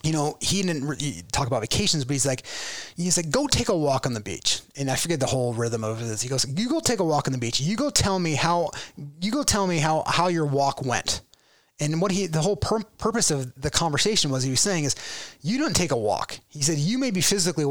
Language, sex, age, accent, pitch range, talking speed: English, male, 30-49, American, 130-170 Hz, 260 wpm